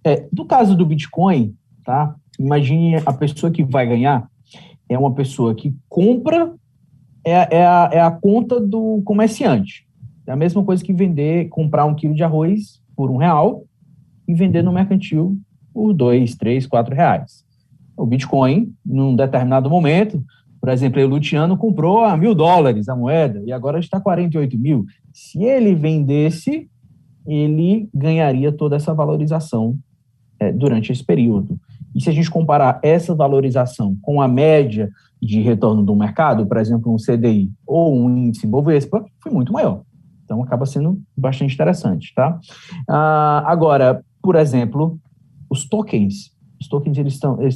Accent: Brazilian